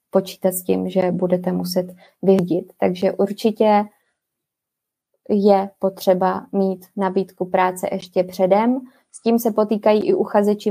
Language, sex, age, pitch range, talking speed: Czech, female, 20-39, 190-210 Hz, 125 wpm